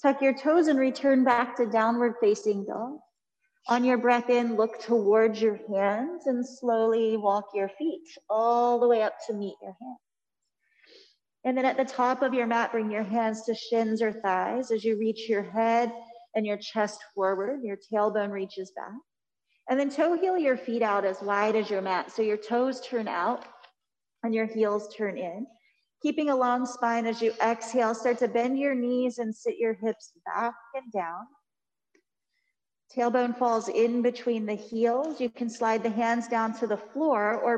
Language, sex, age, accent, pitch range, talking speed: English, female, 30-49, American, 215-255 Hz, 185 wpm